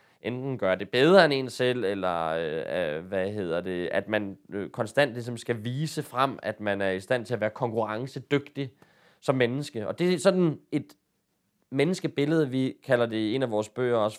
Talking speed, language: 190 wpm, Danish